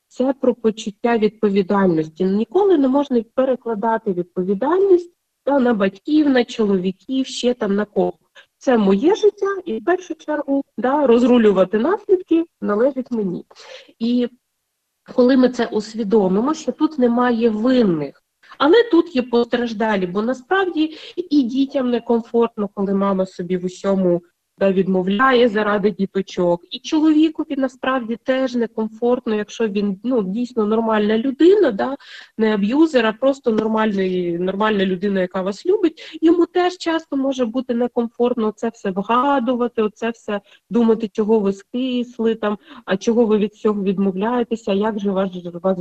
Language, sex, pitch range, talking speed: Ukrainian, female, 205-265 Hz, 135 wpm